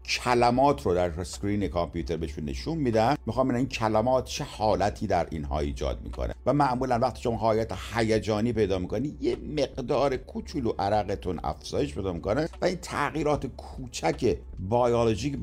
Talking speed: 150 wpm